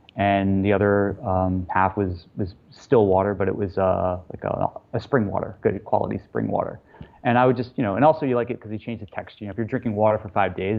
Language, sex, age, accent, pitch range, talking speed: English, male, 30-49, American, 100-115 Hz, 260 wpm